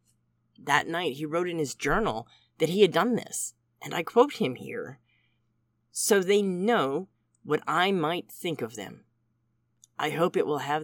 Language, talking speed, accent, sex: English, 170 wpm, American, female